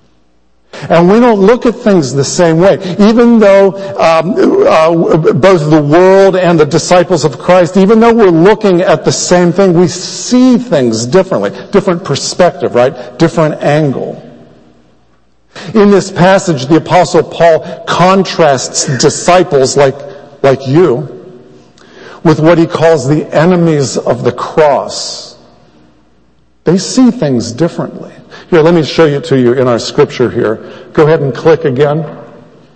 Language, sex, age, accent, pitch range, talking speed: English, male, 50-69, American, 135-185 Hz, 145 wpm